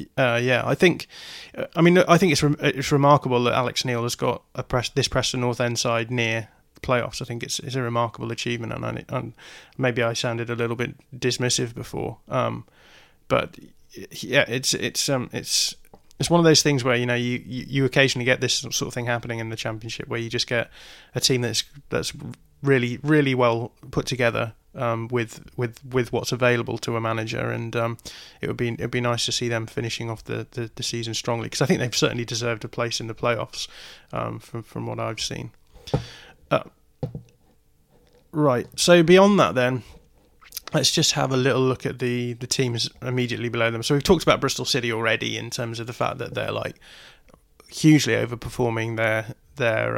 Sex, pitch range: male, 115-135 Hz